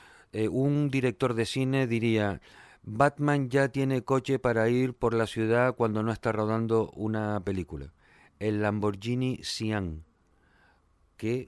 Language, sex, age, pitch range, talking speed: Spanish, male, 40-59, 100-120 Hz, 130 wpm